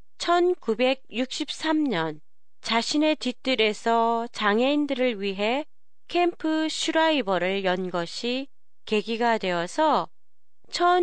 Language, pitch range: Japanese, 195-275 Hz